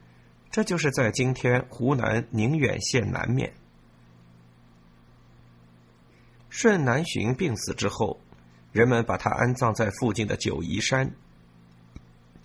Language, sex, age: Chinese, male, 50-69